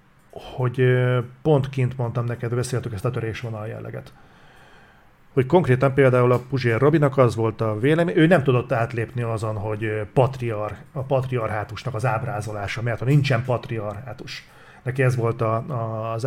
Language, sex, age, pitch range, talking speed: Hungarian, male, 40-59, 115-140 Hz, 150 wpm